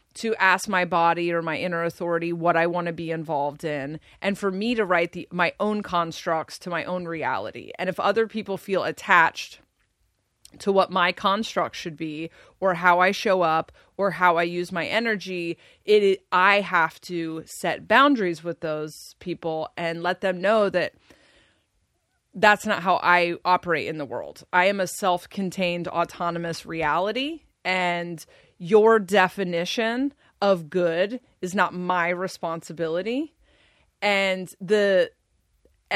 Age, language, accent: 30-49, English, American